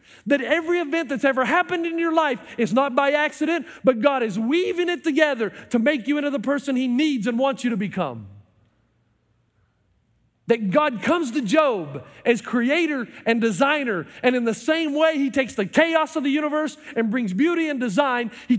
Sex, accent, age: male, American, 40-59